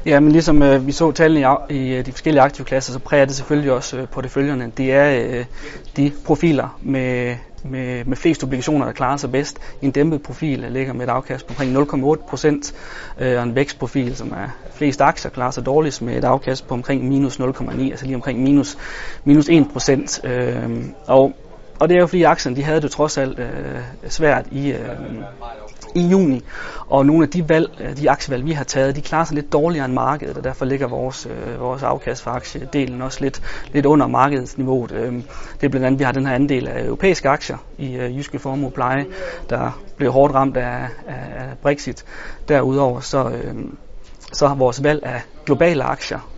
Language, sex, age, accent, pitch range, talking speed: Danish, male, 30-49, native, 130-145 Hz, 200 wpm